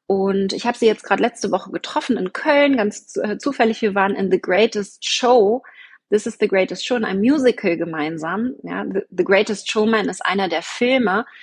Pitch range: 195-250 Hz